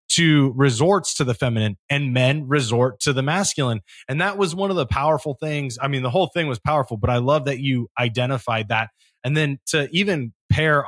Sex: male